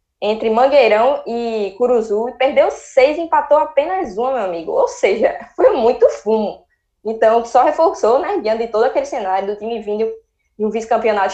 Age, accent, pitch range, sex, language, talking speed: 10-29, Brazilian, 195-260 Hz, female, Portuguese, 165 wpm